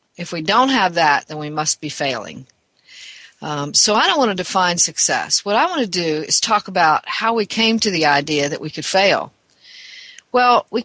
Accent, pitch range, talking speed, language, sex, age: American, 170-225 Hz, 210 wpm, English, female, 50-69